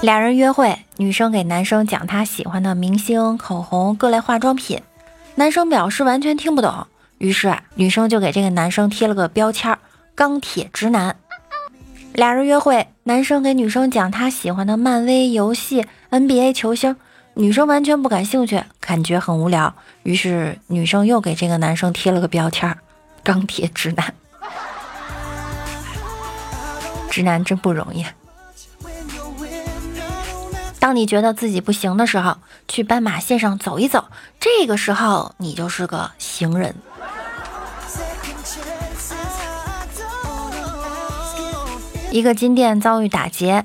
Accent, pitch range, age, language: native, 190-265 Hz, 20-39, Chinese